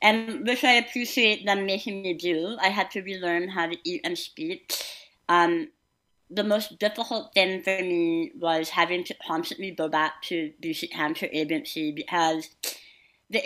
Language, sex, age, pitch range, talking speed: English, female, 30-49, 175-225 Hz, 160 wpm